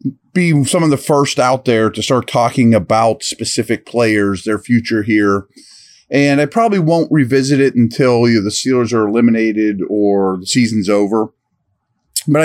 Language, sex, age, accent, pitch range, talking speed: English, male, 30-49, American, 105-140 Hz, 155 wpm